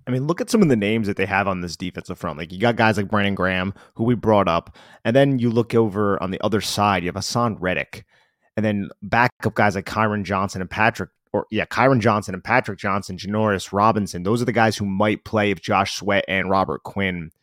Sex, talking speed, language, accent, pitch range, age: male, 240 wpm, English, American, 95-115 Hz, 30-49